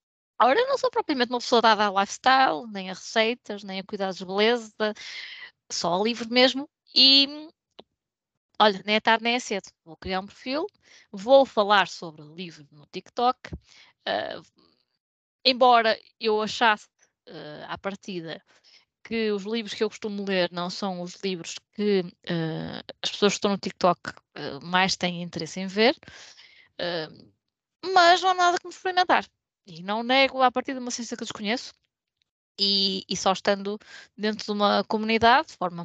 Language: Portuguese